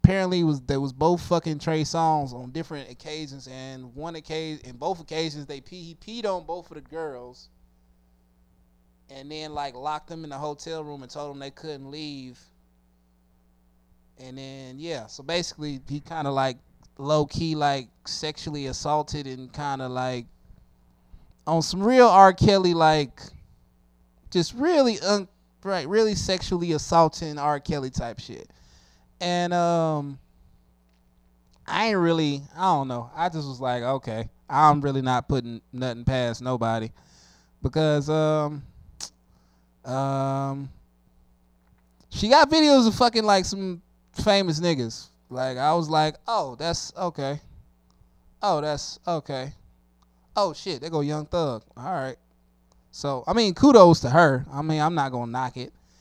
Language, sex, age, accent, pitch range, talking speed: English, male, 20-39, American, 120-165 Hz, 145 wpm